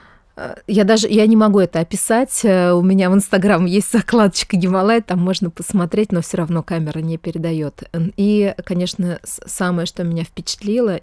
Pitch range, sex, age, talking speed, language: 170-195 Hz, female, 20-39, 160 wpm, Russian